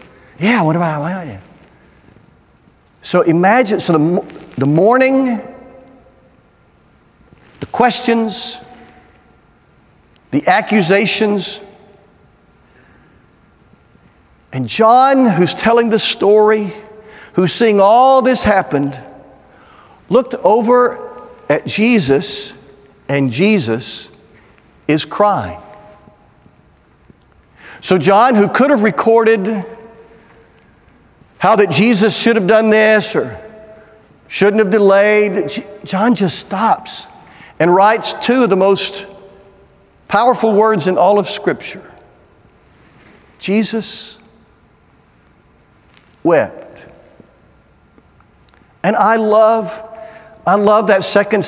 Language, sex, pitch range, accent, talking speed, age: English, male, 190-225 Hz, American, 85 wpm, 50-69